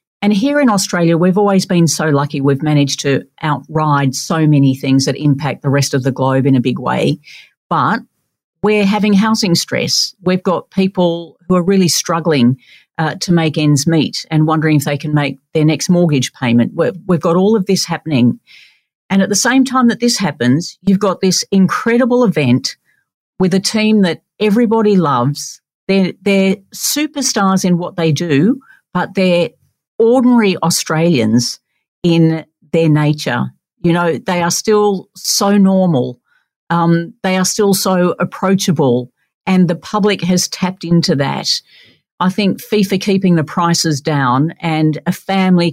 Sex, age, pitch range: female, 50-69, 150-190 Hz